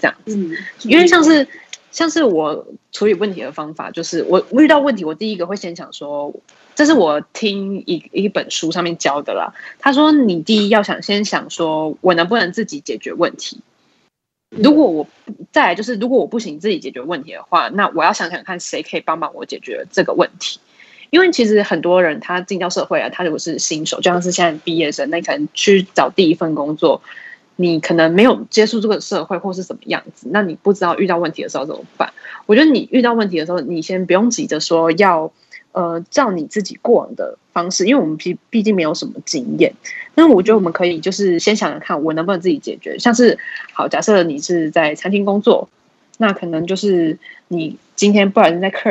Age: 20-39